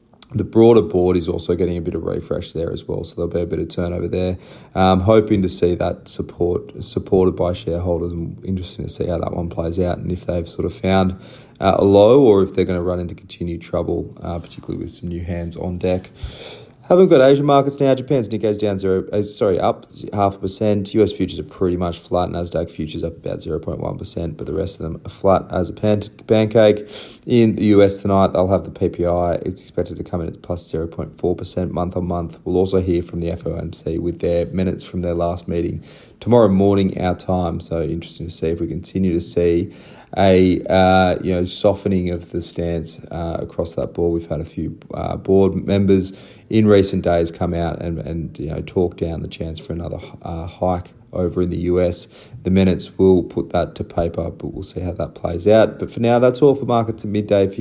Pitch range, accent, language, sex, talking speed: 85-100 Hz, Australian, English, male, 220 wpm